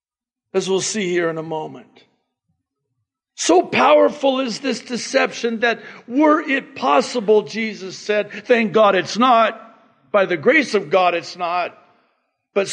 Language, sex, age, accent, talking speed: English, male, 60-79, American, 140 wpm